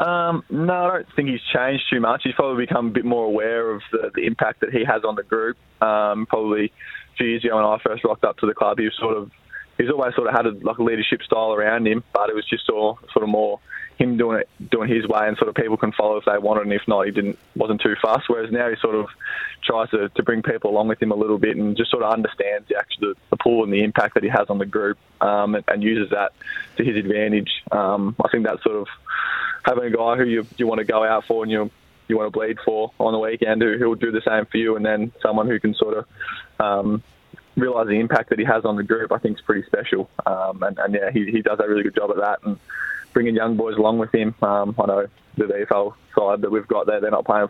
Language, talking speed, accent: English, 280 wpm, Australian